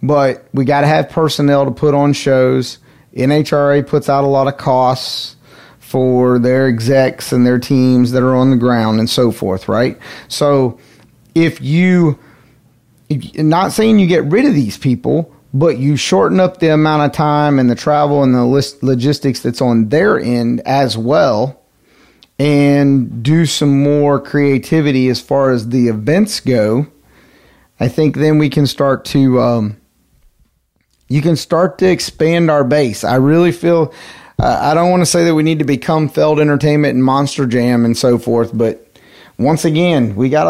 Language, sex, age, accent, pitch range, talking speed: English, male, 30-49, American, 125-150 Hz, 175 wpm